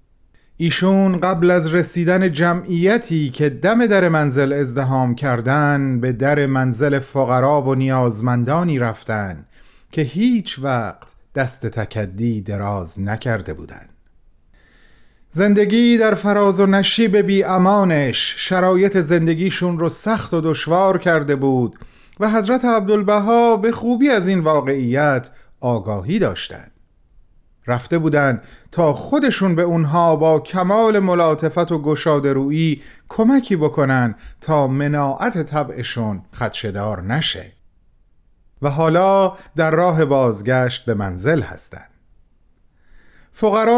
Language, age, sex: Persian, 30-49, male